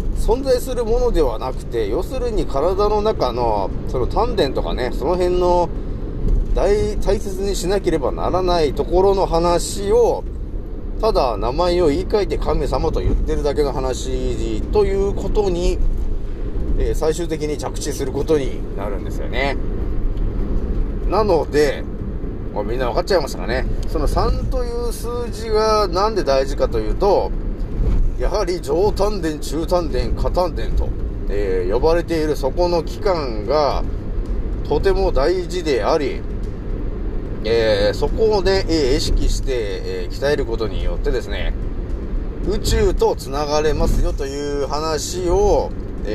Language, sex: Japanese, male